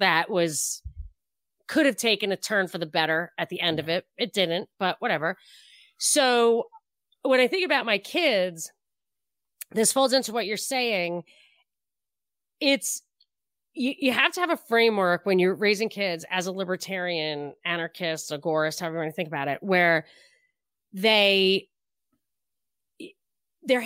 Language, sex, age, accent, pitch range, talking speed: English, female, 30-49, American, 175-240 Hz, 145 wpm